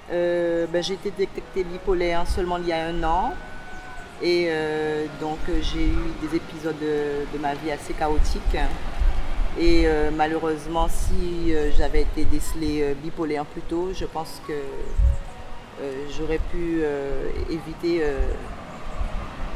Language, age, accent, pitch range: French, 40-59, French, 155-190 Hz